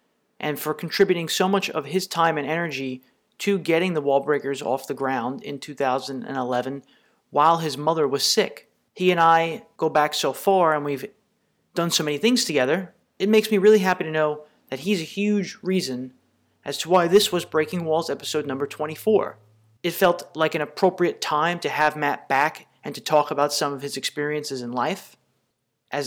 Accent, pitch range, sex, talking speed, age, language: American, 145-180 Hz, male, 190 wpm, 30-49, English